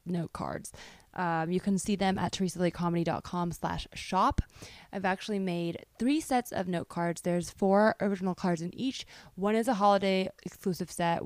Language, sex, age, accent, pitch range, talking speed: English, female, 20-39, American, 175-225 Hz, 165 wpm